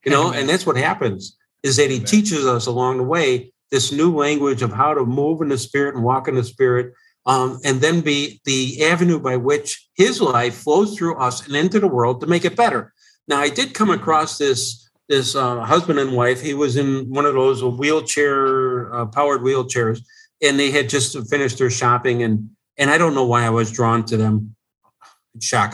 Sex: male